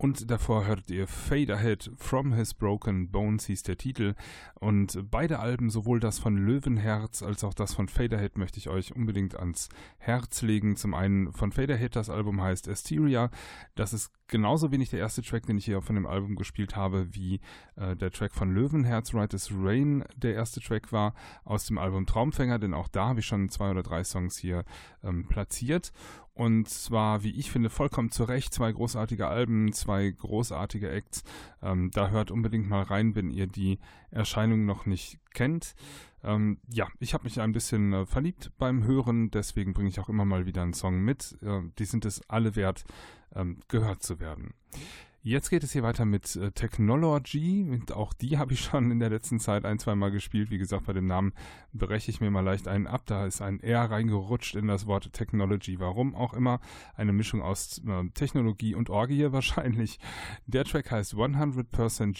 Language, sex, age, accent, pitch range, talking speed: German, male, 10-29, German, 95-120 Hz, 185 wpm